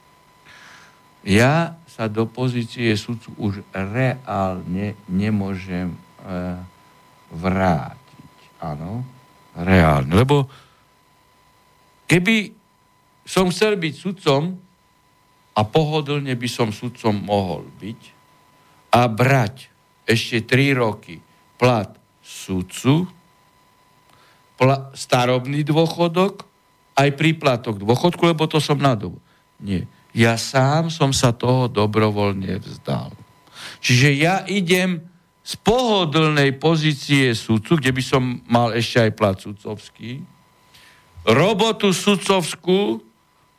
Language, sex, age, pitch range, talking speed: Slovak, male, 60-79, 110-170 Hz, 90 wpm